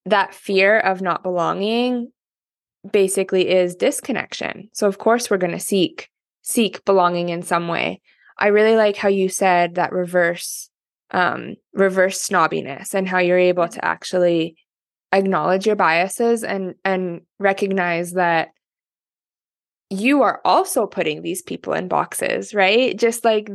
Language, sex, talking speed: English, female, 140 wpm